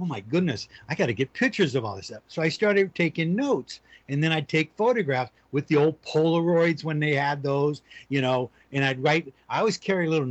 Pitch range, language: 130-175 Hz, English